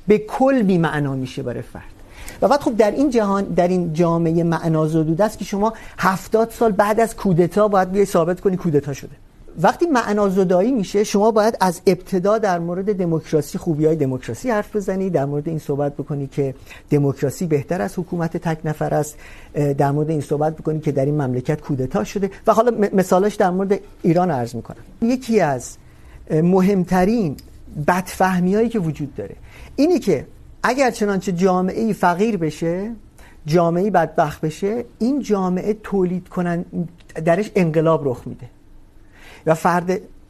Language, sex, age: Urdu, male, 50-69